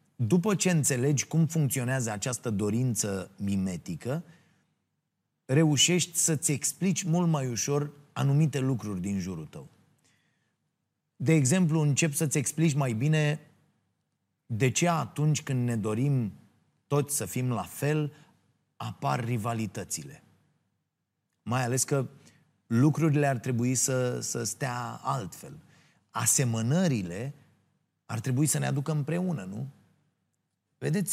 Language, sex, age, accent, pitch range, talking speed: Romanian, male, 30-49, native, 115-150 Hz, 110 wpm